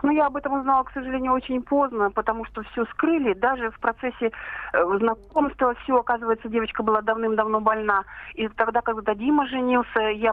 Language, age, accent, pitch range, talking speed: Russian, 40-59, native, 210-250 Hz, 170 wpm